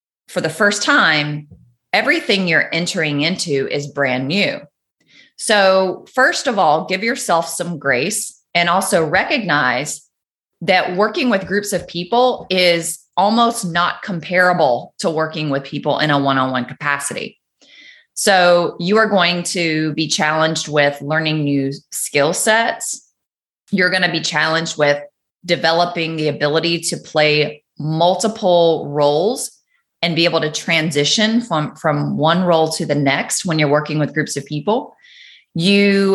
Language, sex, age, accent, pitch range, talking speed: English, female, 20-39, American, 145-180 Hz, 140 wpm